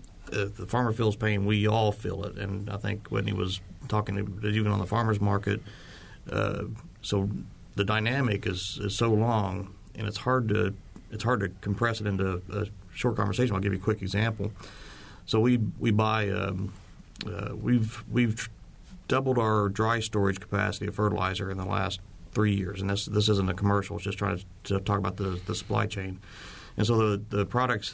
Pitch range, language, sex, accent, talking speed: 100-110 Hz, English, male, American, 195 wpm